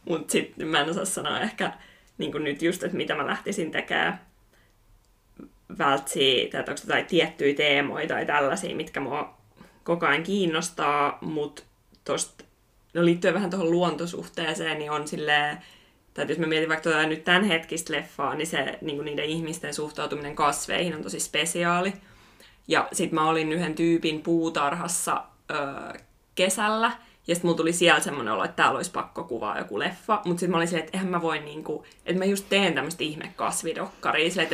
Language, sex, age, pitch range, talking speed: Finnish, female, 20-39, 155-180 Hz, 175 wpm